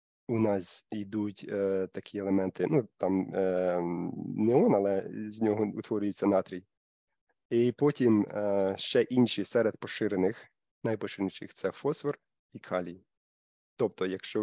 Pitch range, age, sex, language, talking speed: 95-115 Hz, 20-39, male, Ukrainian, 120 wpm